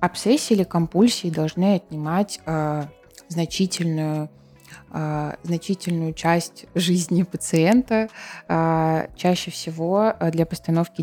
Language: Russian